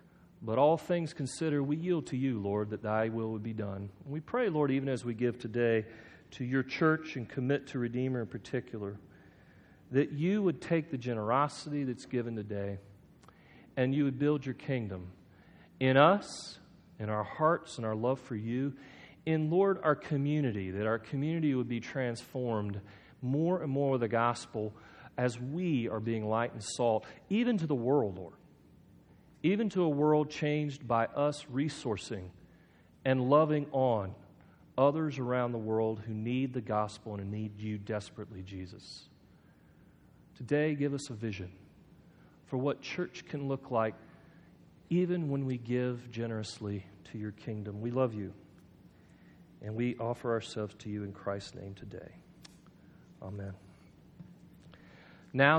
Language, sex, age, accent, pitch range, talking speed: English, male, 40-59, American, 110-145 Hz, 155 wpm